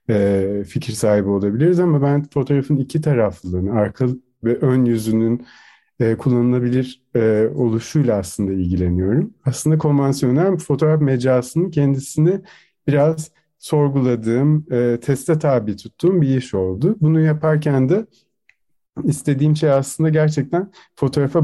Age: 40-59